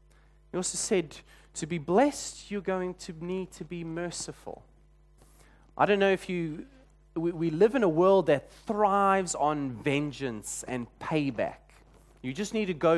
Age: 30-49